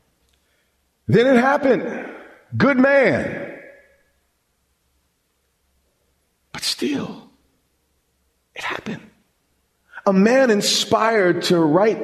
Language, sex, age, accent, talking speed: English, male, 50-69, American, 70 wpm